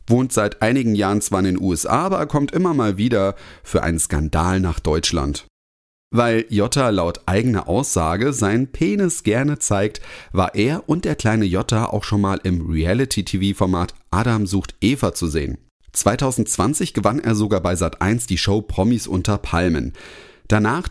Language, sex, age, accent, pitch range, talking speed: German, male, 30-49, German, 90-120 Hz, 160 wpm